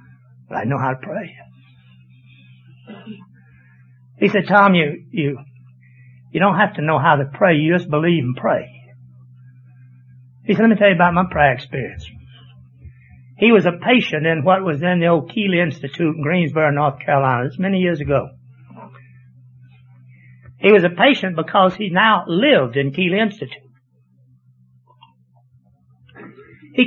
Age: 60-79